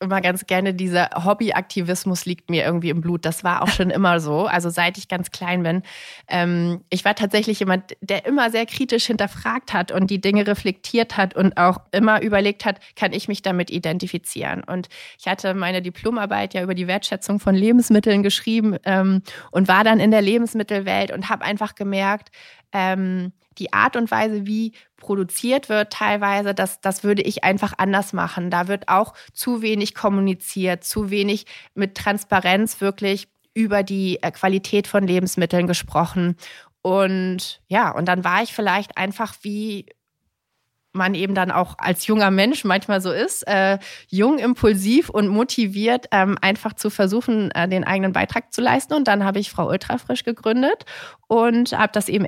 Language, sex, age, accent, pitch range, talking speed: German, female, 30-49, German, 185-215 Hz, 170 wpm